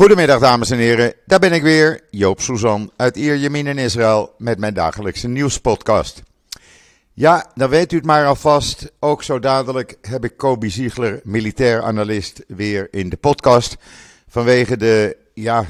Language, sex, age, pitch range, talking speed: Dutch, male, 50-69, 100-125 Hz, 155 wpm